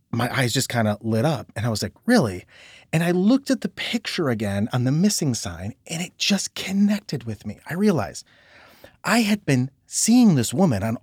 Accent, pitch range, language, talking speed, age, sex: American, 110-165 Hz, English, 205 wpm, 30-49, male